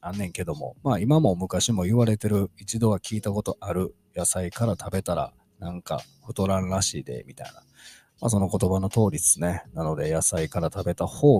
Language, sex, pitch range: Japanese, male, 90-125 Hz